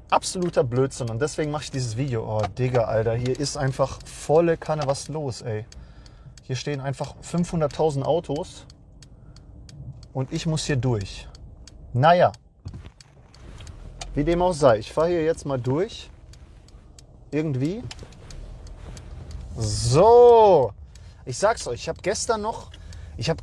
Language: English